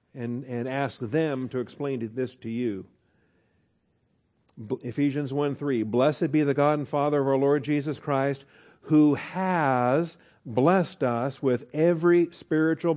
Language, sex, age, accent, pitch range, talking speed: English, male, 50-69, American, 120-150 Hz, 135 wpm